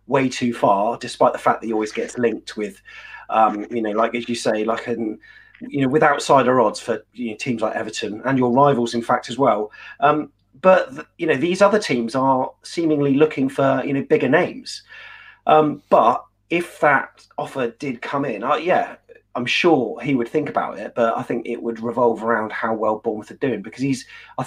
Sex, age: male, 30-49